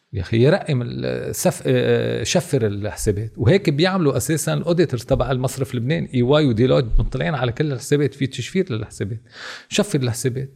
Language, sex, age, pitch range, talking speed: Arabic, male, 40-59, 110-150 Hz, 130 wpm